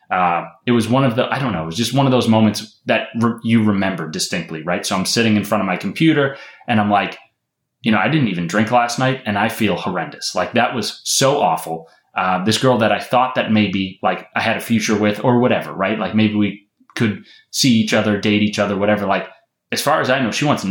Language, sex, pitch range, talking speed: English, male, 95-115 Hz, 245 wpm